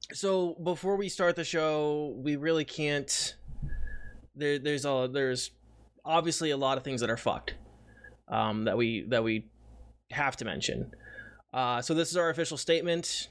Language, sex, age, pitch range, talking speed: English, male, 20-39, 135-175 Hz, 160 wpm